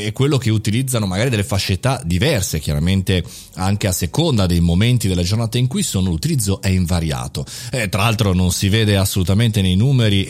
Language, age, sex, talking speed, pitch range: Italian, 30-49, male, 180 wpm, 95-135 Hz